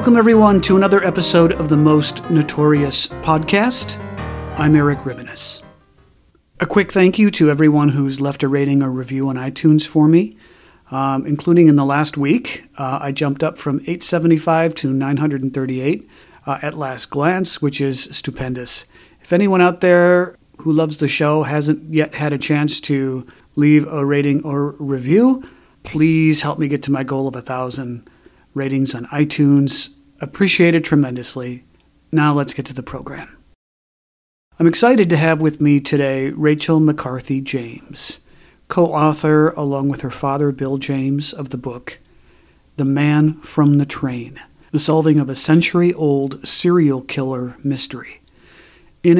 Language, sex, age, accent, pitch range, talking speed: English, male, 40-59, American, 135-160 Hz, 150 wpm